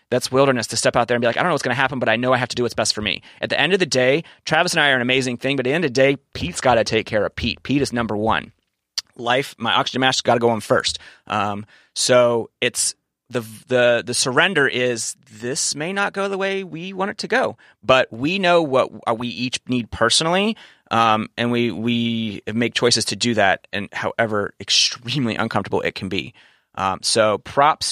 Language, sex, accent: English, male, American